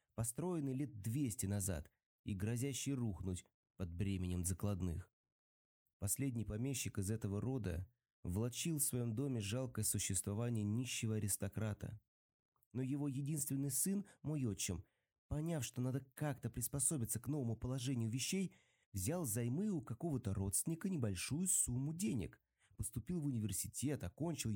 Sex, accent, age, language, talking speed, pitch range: male, native, 30-49, Russian, 120 wpm, 105-145 Hz